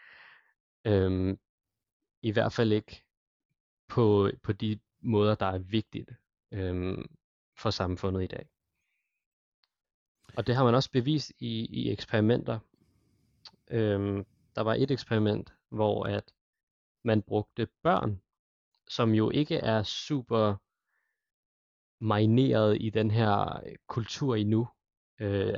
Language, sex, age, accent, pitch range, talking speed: Danish, male, 20-39, native, 100-120 Hz, 115 wpm